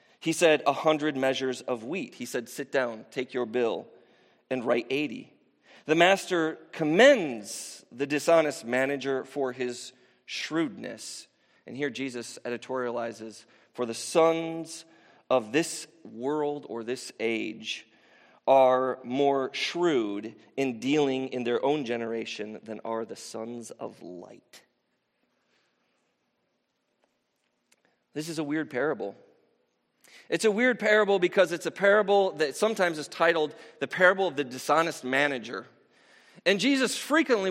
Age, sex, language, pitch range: 40-59, male, English, 130-180 Hz